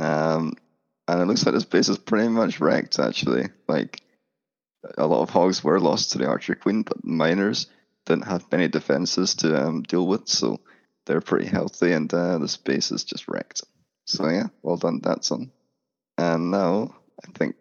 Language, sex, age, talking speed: English, male, 20-39, 180 wpm